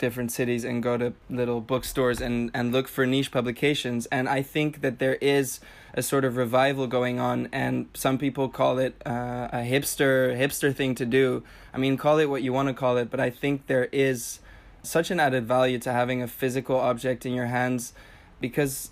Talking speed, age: 205 wpm, 20-39